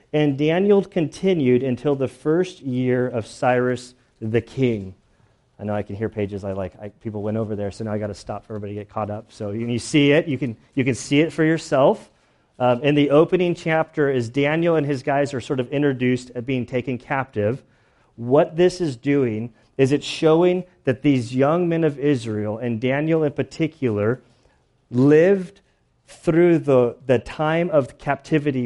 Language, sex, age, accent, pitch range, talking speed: English, male, 30-49, American, 120-150 Hz, 190 wpm